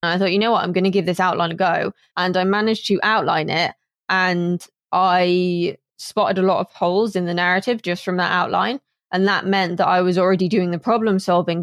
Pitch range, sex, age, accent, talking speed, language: 175-195 Hz, female, 20-39, British, 225 wpm, English